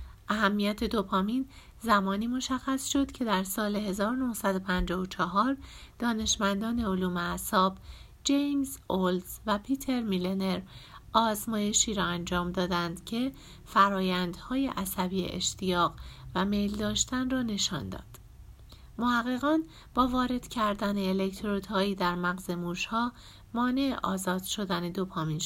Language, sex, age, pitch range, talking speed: Persian, female, 50-69, 185-240 Hz, 100 wpm